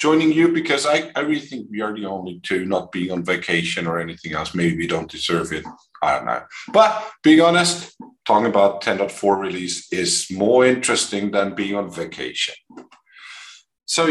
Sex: male